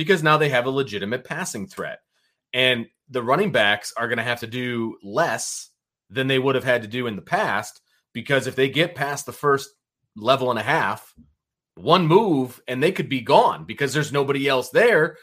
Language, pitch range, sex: English, 110-140 Hz, male